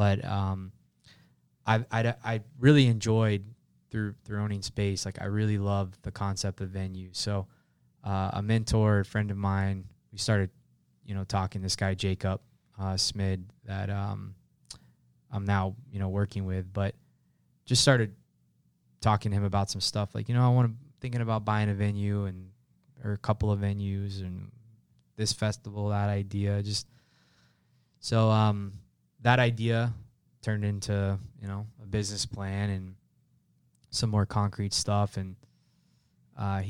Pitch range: 95-110 Hz